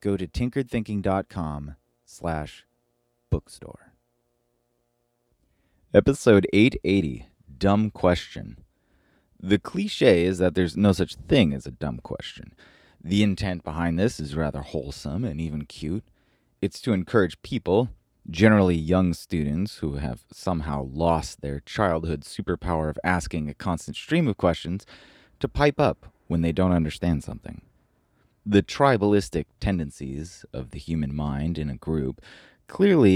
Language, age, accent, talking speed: English, 30-49, American, 125 wpm